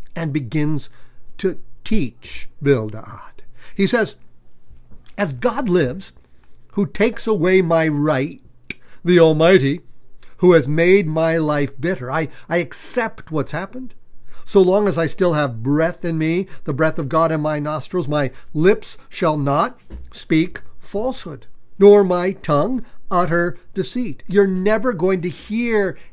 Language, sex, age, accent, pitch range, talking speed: English, male, 50-69, American, 145-200 Hz, 140 wpm